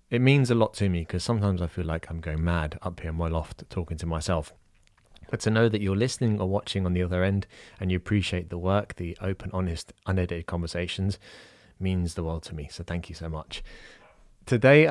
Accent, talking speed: British, 220 wpm